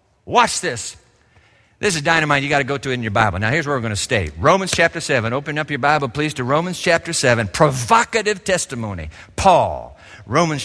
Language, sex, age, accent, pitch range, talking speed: English, male, 50-69, American, 145-230 Hz, 210 wpm